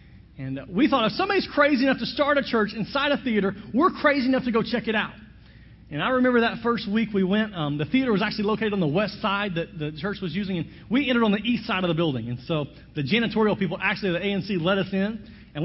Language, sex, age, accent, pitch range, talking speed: English, male, 40-59, American, 130-195 Hz, 255 wpm